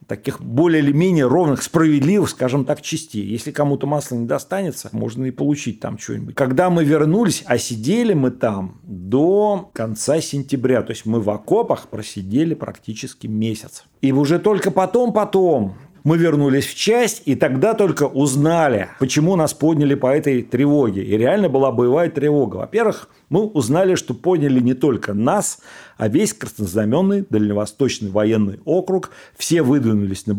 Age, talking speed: 40-59, 150 wpm